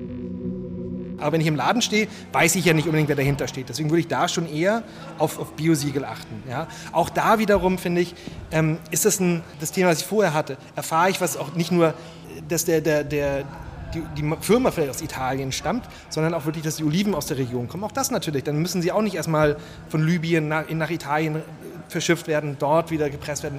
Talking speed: 225 wpm